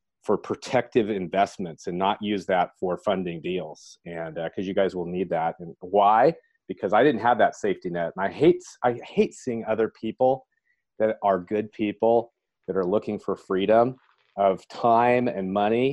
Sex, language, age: male, English, 40-59